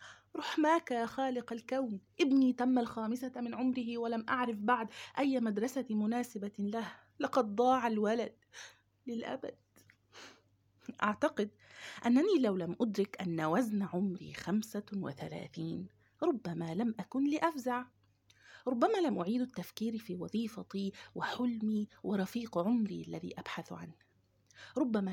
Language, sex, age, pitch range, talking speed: Arabic, female, 30-49, 175-235 Hz, 110 wpm